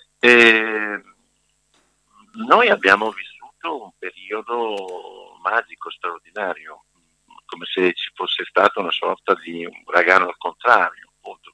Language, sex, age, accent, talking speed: Italian, male, 50-69, native, 110 wpm